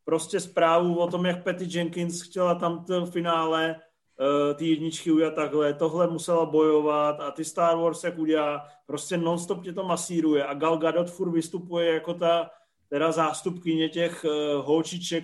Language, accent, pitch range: Czech, native, 150-170 Hz